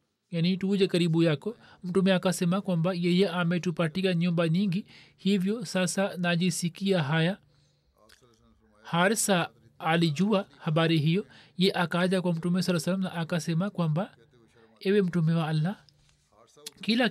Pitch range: 160-185 Hz